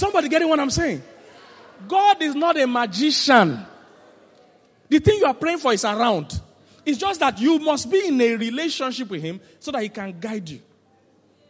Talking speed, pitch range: 185 wpm, 165-250 Hz